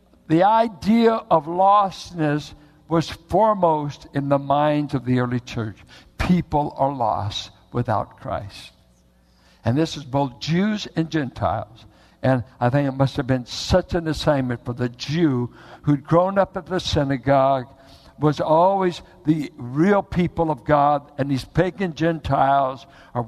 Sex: male